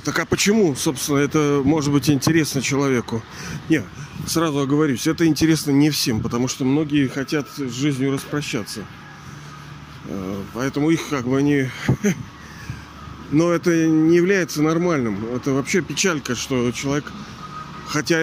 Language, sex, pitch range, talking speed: Russian, male, 135-175 Hz, 130 wpm